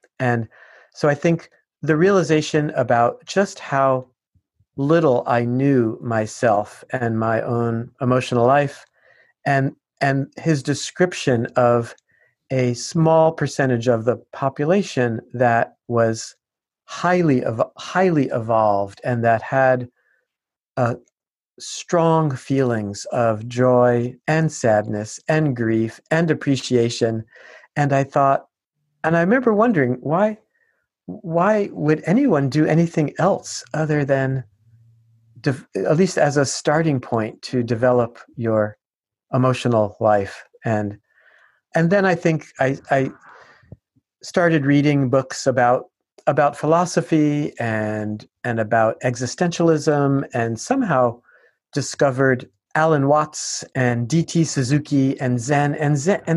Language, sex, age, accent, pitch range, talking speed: English, male, 50-69, American, 120-155 Hz, 115 wpm